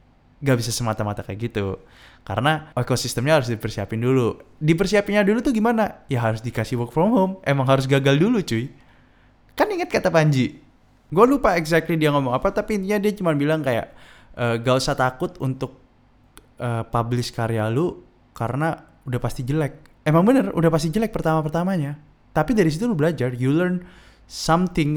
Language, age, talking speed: Indonesian, 20-39, 165 wpm